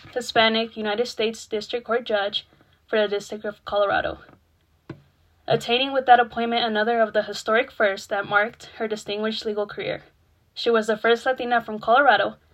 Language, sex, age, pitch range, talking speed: English, female, 10-29, 210-235 Hz, 160 wpm